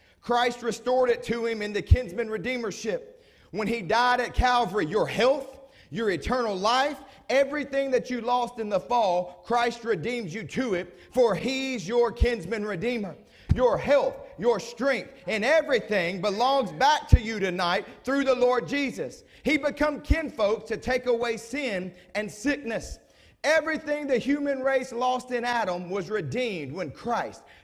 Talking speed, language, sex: 155 wpm, English, male